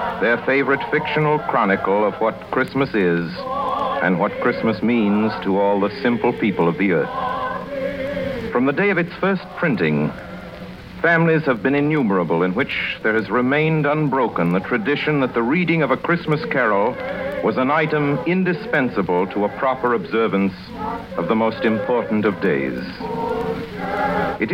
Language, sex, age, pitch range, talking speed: English, male, 60-79, 120-180 Hz, 150 wpm